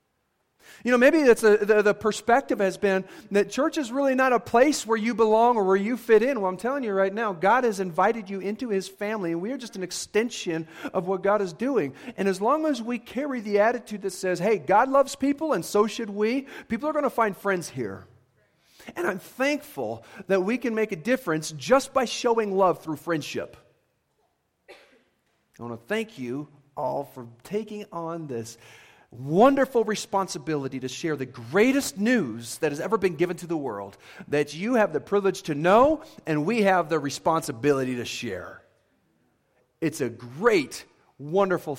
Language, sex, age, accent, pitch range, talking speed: English, male, 50-69, American, 145-220 Hz, 190 wpm